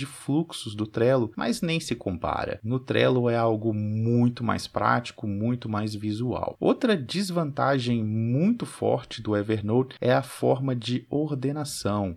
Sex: male